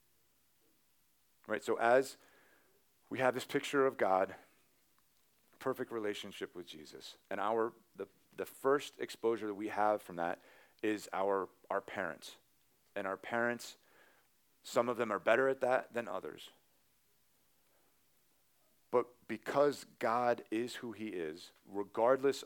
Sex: male